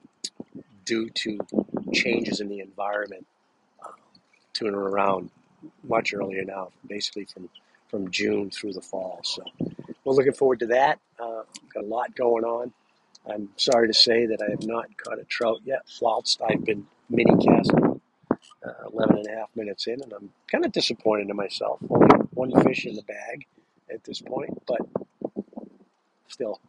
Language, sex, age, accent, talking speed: English, male, 50-69, American, 160 wpm